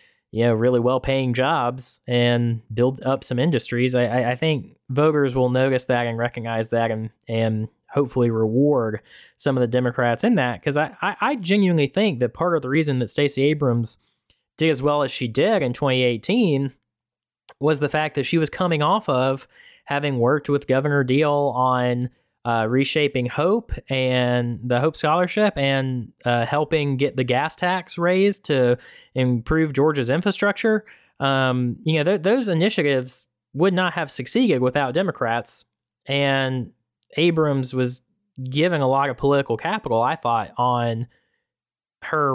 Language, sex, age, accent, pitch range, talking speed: English, male, 20-39, American, 120-150 Hz, 155 wpm